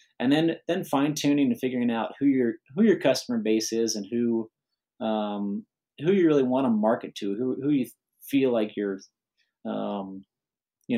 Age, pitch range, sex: 30-49, 105-125 Hz, male